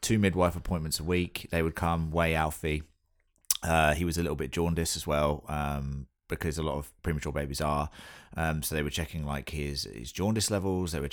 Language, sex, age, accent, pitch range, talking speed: English, male, 30-49, British, 75-90 Hz, 210 wpm